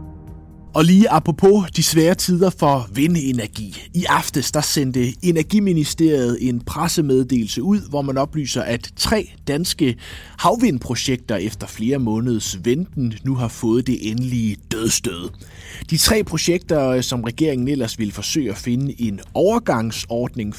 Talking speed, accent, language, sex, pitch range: 130 wpm, native, Danish, male, 105-155 Hz